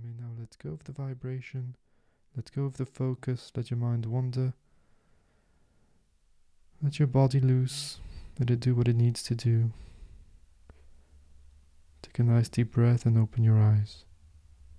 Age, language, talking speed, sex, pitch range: 20-39, English, 145 wpm, male, 95-130 Hz